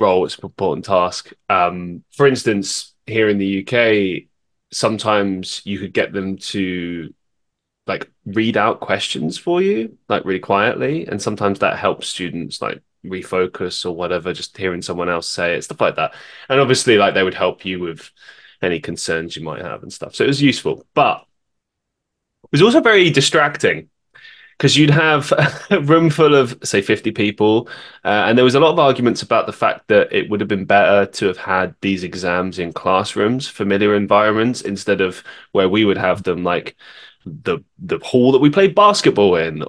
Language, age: English, 20-39